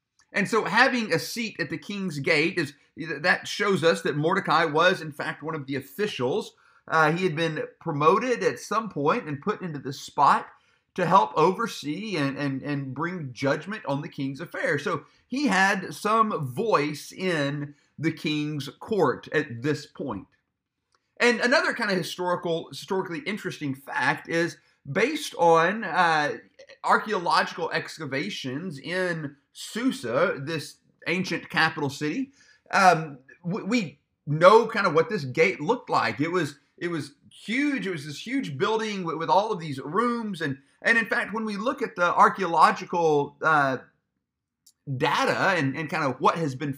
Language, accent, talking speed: English, American, 160 wpm